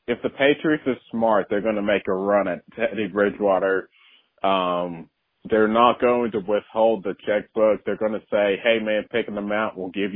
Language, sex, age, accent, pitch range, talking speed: English, male, 30-49, American, 100-125 Hz, 185 wpm